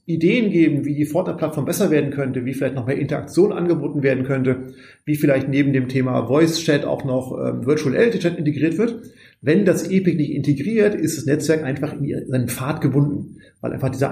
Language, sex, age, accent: German, male, 30-49, German